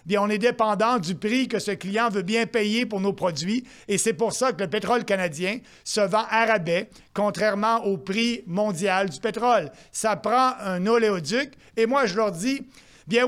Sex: male